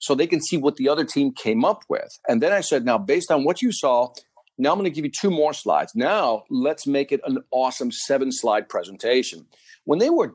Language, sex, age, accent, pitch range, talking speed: English, male, 50-69, American, 125-185 Hz, 240 wpm